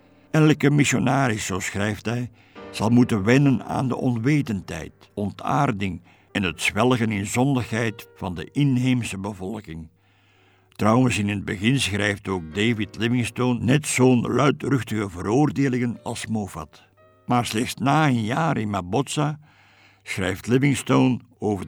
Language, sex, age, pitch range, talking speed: Dutch, male, 60-79, 100-130 Hz, 125 wpm